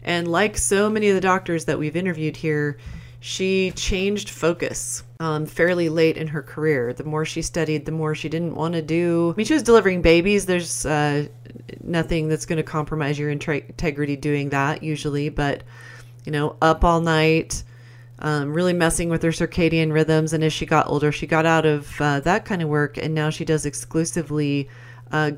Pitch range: 145-170 Hz